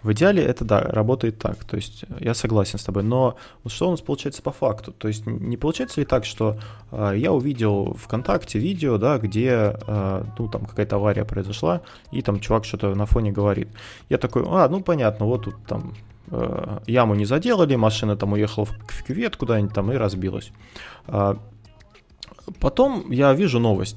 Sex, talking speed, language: male, 180 wpm, Russian